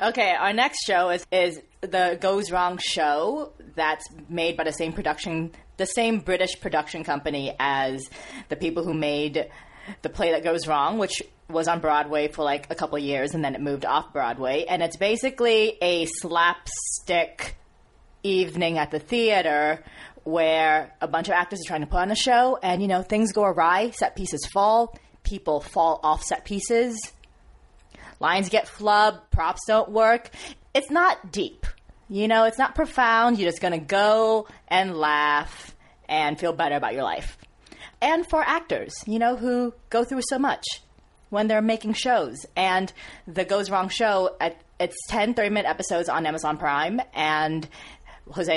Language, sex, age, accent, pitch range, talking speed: English, female, 20-39, American, 155-215 Hz, 170 wpm